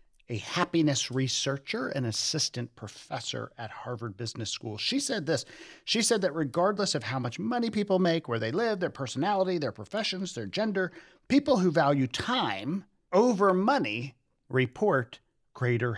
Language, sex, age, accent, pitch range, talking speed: English, male, 40-59, American, 110-170 Hz, 150 wpm